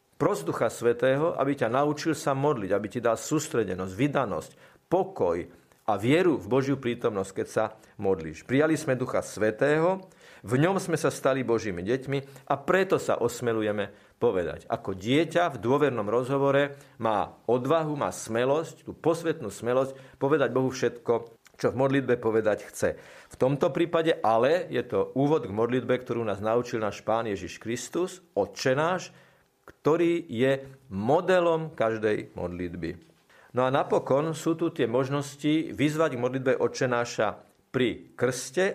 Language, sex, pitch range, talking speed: Slovak, male, 120-155 Hz, 145 wpm